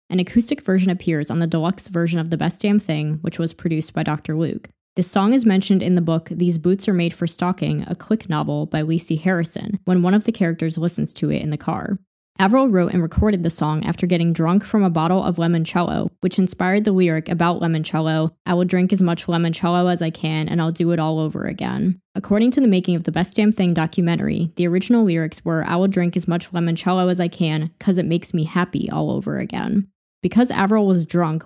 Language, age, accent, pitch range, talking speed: English, 20-39, American, 165-195 Hz, 230 wpm